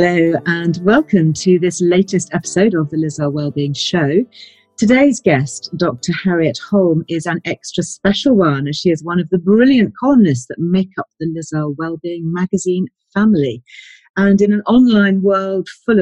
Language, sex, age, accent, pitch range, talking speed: English, female, 40-59, British, 150-195 Hz, 165 wpm